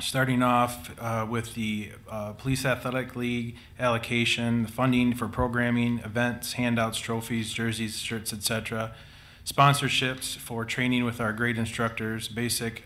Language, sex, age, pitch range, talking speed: English, male, 30-49, 110-120 Hz, 135 wpm